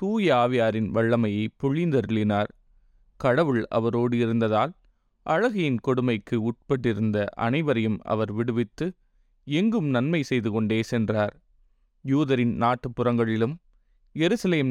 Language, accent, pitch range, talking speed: Tamil, native, 110-130 Hz, 85 wpm